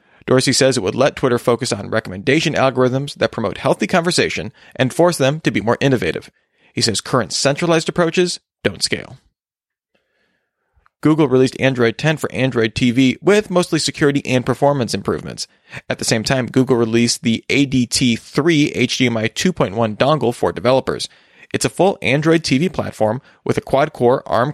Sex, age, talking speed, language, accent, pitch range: male, 30-49, 155 wpm, English, American, 115-145 Hz